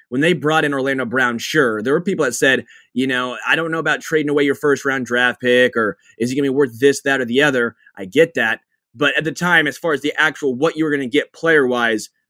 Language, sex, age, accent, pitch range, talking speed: English, male, 20-39, American, 125-155 Hz, 275 wpm